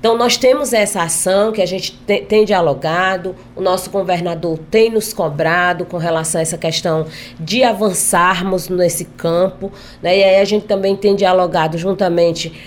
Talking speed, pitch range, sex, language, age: 160 wpm, 170-200 Hz, female, Portuguese, 20-39